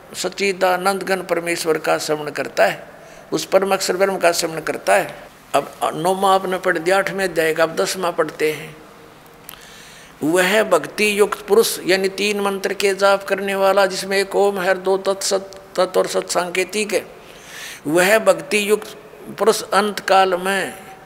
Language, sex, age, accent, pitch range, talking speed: Hindi, male, 50-69, native, 175-205 Hz, 75 wpm